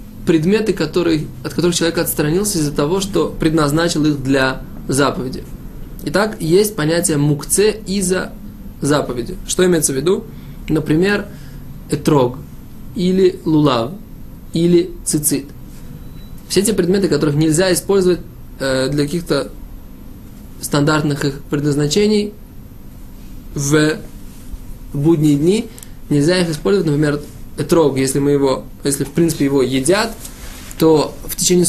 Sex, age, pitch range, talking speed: male, 20-39, 140-175 Hz, 110 wpm